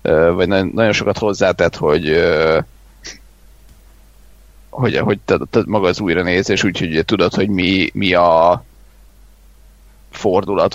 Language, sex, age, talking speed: Hungarian, male, 30-49, 105 wpm